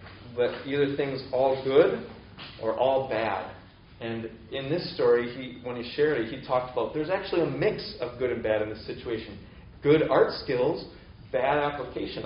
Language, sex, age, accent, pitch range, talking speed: English, male, 30-49, American, 110-150 Hz, 175 wpm